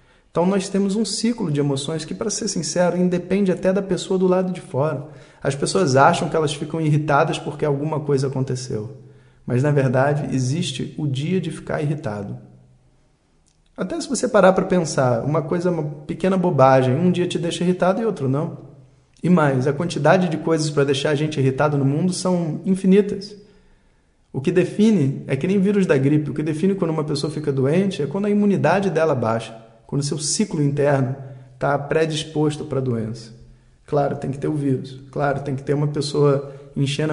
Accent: Brazilian